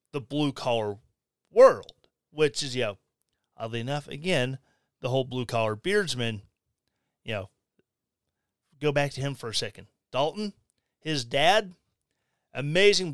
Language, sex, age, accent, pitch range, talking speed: English, male, 30-49, American, 125-175 Hz, 125 wpm